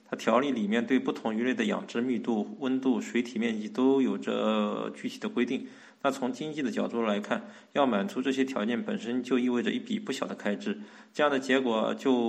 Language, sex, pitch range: Chinese, male, 115-130 Hz